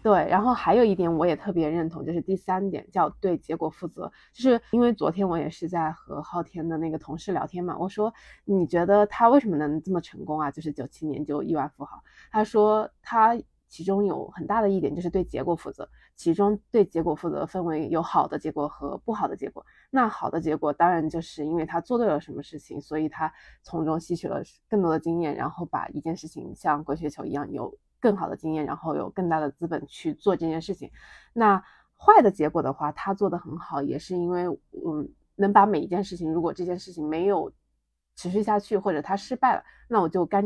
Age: 20-39